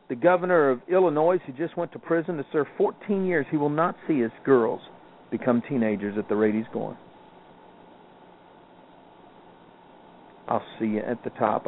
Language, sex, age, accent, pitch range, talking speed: English, male, 50-69, American, 115-165 Hz, 165 wpm